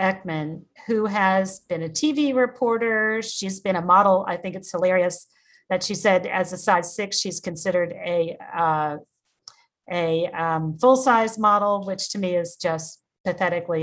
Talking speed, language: 155 wpm, English